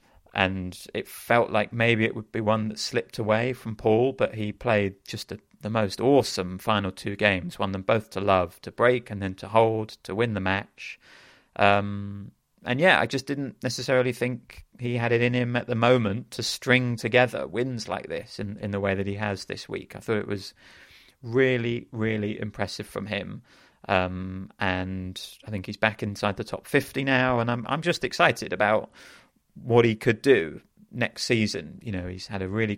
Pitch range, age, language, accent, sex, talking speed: 95-120 Hz, 30-49, English, British, male, 200 wpm